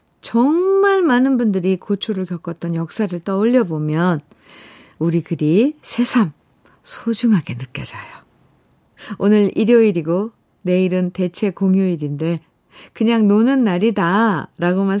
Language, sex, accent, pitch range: Korean, female, native, 175-245 Hz